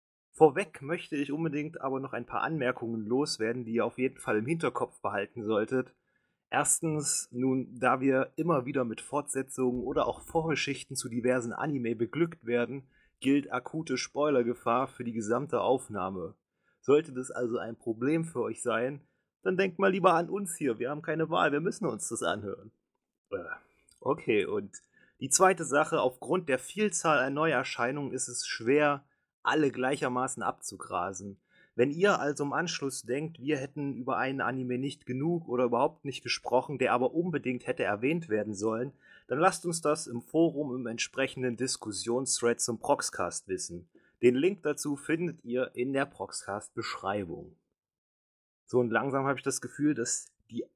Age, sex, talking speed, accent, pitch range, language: 30-49, male, 160 wpm, German, 120-150 Hz, German